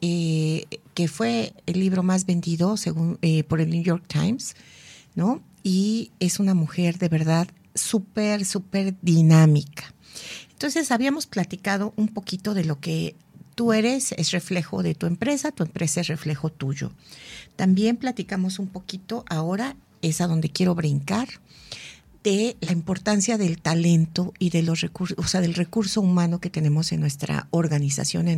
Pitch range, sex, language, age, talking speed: 165-205 Hz, female, Spanish, 50-69, 155 wpm